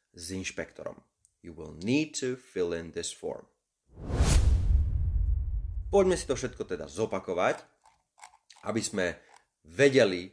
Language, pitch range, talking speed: Slovak, 85-125 Hz, 110 wpm